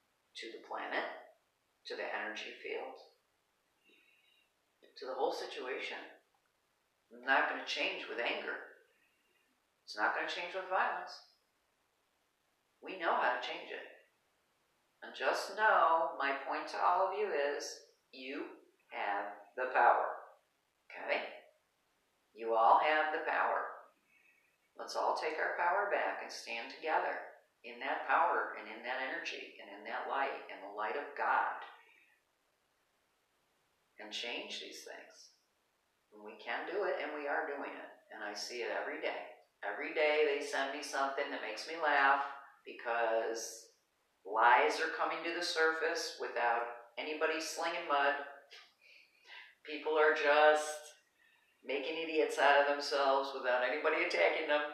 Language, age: English, 50-69